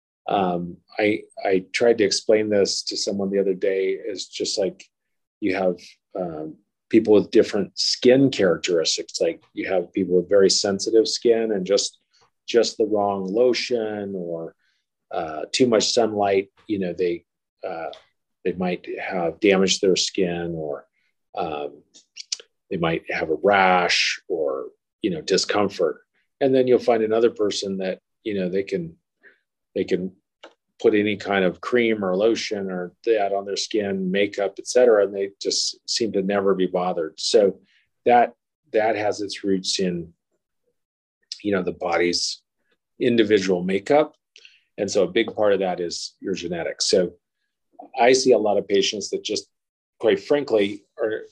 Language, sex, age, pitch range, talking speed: English, male, 40-59, 95-150 Hz, 155 wpm